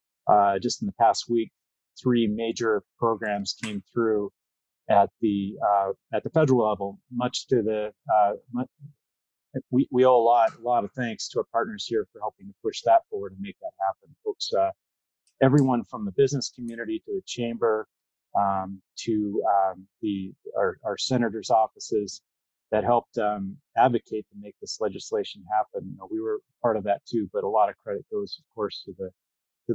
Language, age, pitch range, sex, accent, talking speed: English, 30-49, 100-145 Hz, male, American, 185 wpm